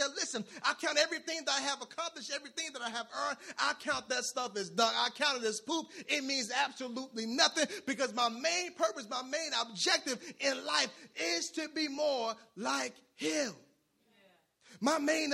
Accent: American